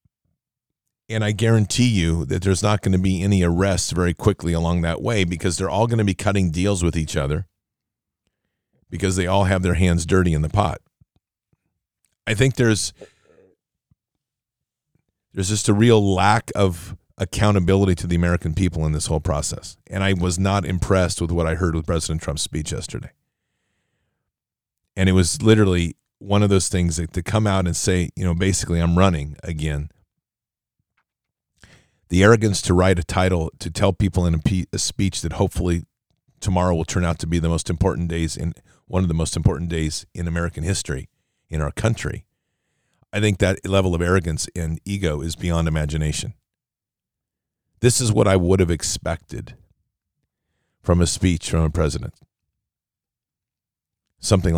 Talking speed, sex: 165 wpm, male